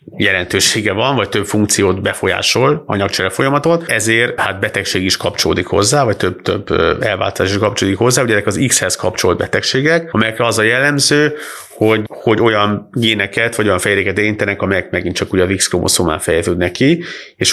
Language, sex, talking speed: Hungarian, male, 155 wpm